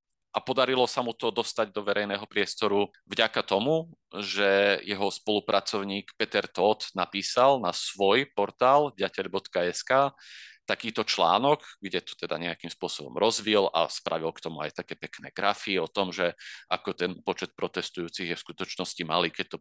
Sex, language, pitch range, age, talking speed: male, Slovak, 85-100 Hz, 30-49, 155 wpm